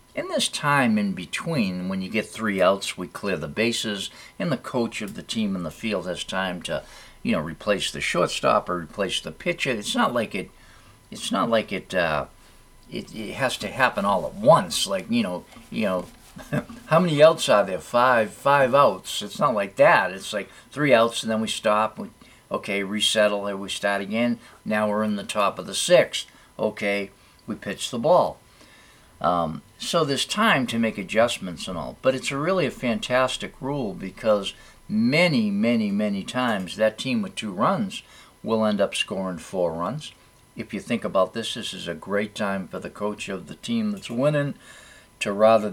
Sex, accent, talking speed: male, American, 195 wpm